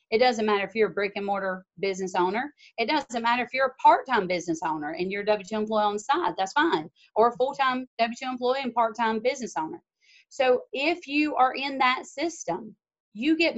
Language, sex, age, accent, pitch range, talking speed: English, female, 30-49, American, 200-250 Hz, 210 wpm